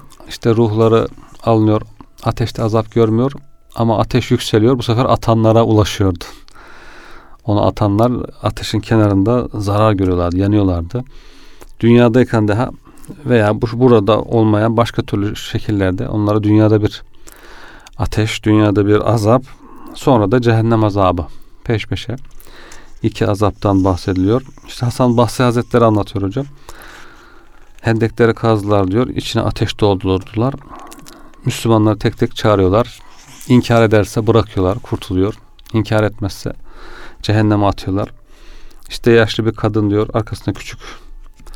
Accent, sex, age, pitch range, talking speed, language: native, male, 40-59, 105-120 Hz, 110 wpm, Turkish